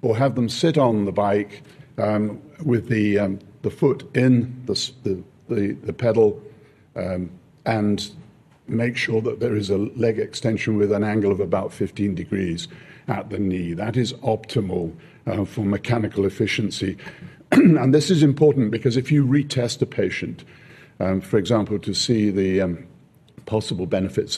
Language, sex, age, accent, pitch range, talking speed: English, male, 50-69, British, 100-125 Hz, 160 wpm